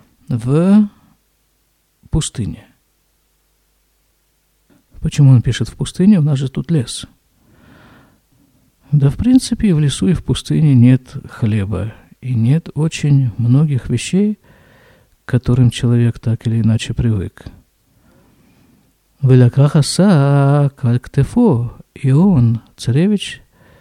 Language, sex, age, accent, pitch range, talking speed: Russian, male, 50-69, native, 115-175 Hz, 100 wpm